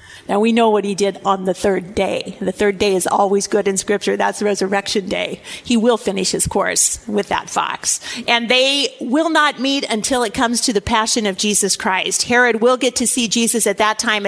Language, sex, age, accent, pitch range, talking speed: English, female, 50-69, American, 205-245 Hz, 225 wpm